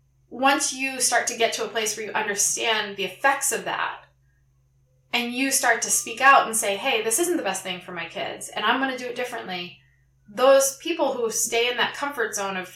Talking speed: 225 wpm